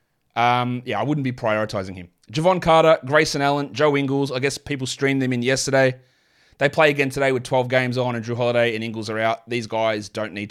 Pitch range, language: 120-160 Hz, English